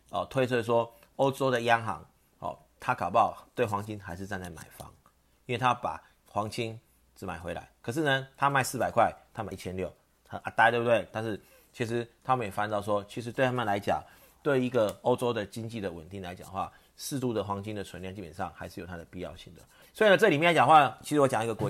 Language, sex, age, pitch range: Chinese, male, 30-49, 95-120 Hz